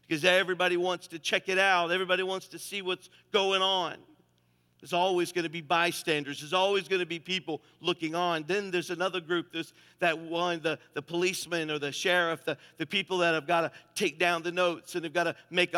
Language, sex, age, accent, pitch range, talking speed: English, male, 50-69, American, 170-190 Hz, 215 wpm